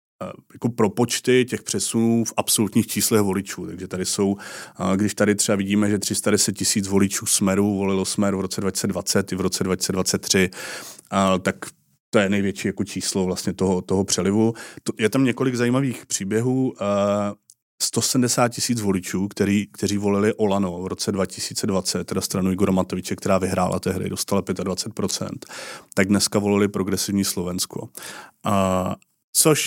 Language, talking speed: Czech, 145 wpm